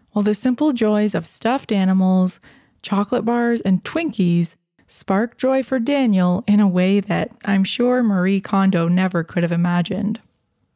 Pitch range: 180-225 Hz